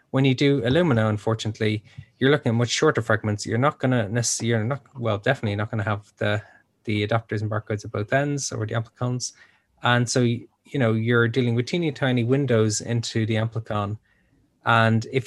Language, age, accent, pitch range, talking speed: English, 20-39, Irish, 110-130 Hz, 190 wpm